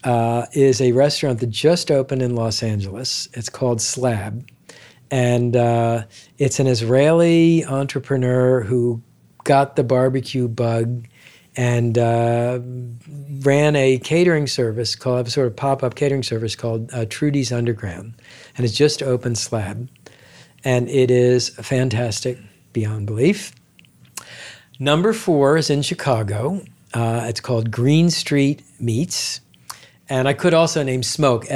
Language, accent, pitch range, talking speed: English, American, 115-145 Hz, 135 wpm